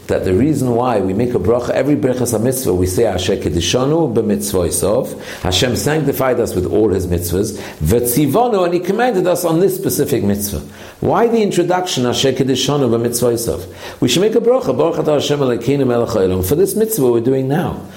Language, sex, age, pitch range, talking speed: English, male, 60-79, 105-160 Hz, 165 wpm